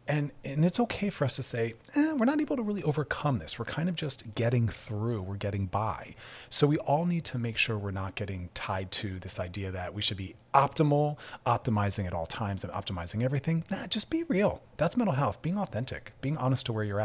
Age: 30-49